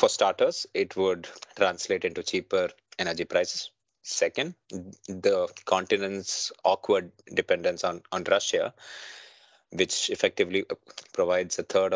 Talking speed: 110 wpm